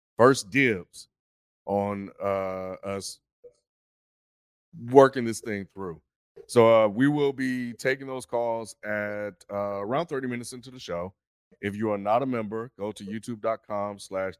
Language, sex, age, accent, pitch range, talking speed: English, male, 30-49, American, 95-125 Hz, 140 wpm